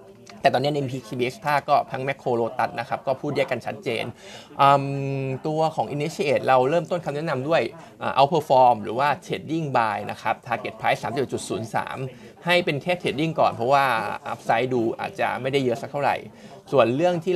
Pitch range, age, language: 130-165 Hz, 20-39, Thai